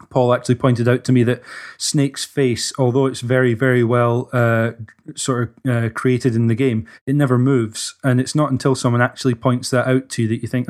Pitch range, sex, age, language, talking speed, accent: 115-130 Hz, male, 20-39, English, 220 wpm, British